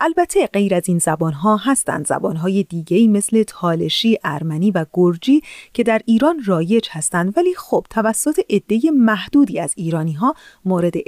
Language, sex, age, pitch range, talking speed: Persian, female, 30-49, 180-270 Hz, 155 wpm